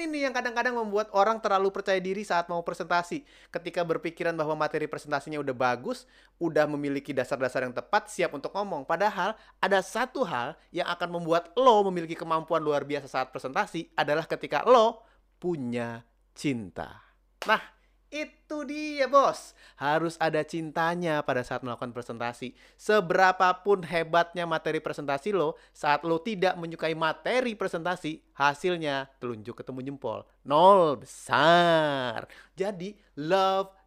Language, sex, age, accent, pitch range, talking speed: Indonesian, male, 30-49, native, 150-205 Hz, 130 wpm